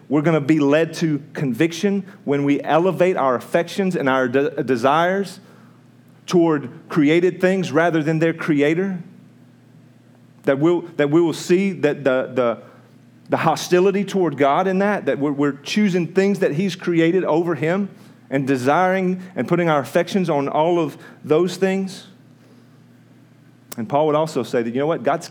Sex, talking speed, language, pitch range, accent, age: male, 165 wpm, English, 135-175 Hz, American, 40-59